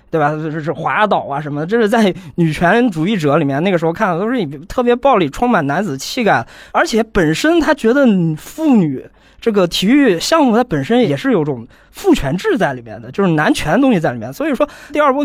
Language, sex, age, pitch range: Chinese, male, 20-39, 170-250 Hz